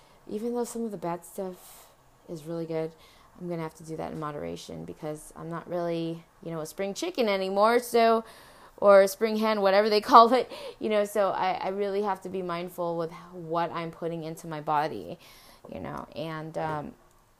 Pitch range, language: 160-185 Hz, English